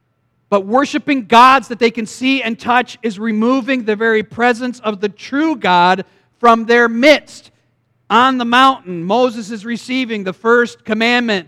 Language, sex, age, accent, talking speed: English, male, 40-59, American, 155 wpm